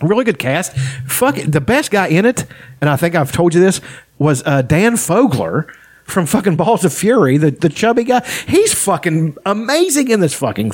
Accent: American